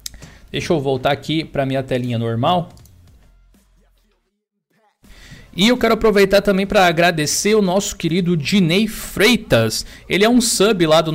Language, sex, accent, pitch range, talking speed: Portuguese, male, Brazilian, 135-190 Hz, 140 wpm